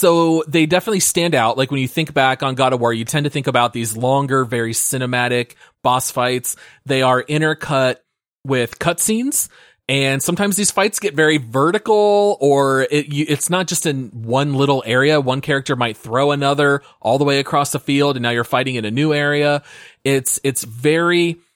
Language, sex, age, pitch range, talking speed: English, male, 30-49, 125-155 Hz, 190 wpm